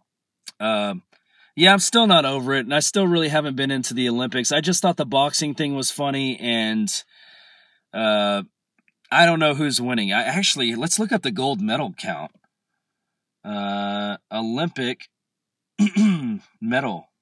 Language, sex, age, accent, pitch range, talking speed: English, male, 30-49, American, 120-180 Hz, 155 wpm